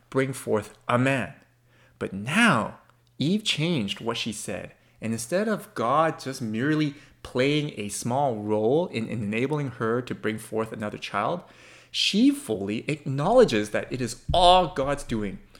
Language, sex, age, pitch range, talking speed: English, male, 30-49, 115-175 Hz, 145 wpm